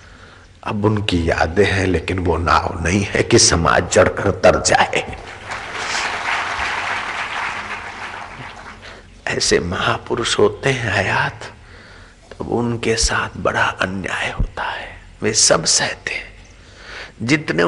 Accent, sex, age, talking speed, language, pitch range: native, male, 50-69, 105 wpm, Hindi, 95-125 Hz